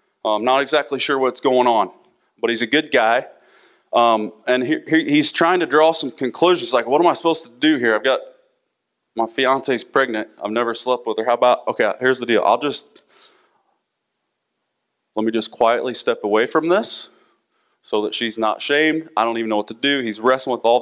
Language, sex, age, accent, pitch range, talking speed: English, male, 20-39, American, 115-145 Hz, 200 wpm